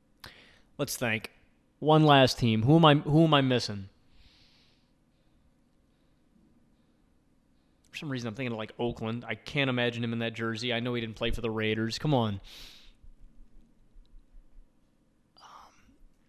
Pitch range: 105-130 Hz